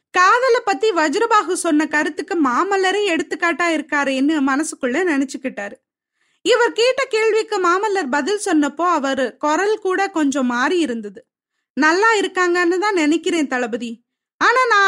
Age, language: 20-39, Tamil